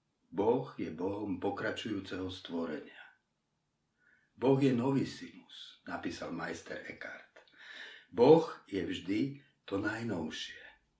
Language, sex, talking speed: Slovak, male, 95 wpm